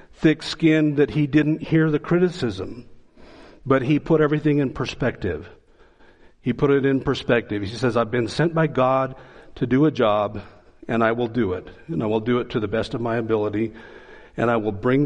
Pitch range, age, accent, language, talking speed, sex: 115-150 Hz, 50-69, American, English, 195 wpm, male